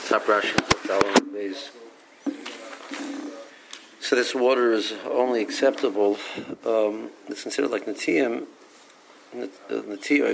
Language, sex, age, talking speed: English, male, 50-69, 80 wpm